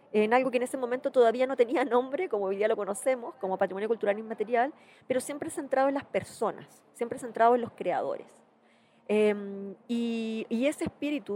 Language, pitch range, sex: Spanish, 200-255 Hz, female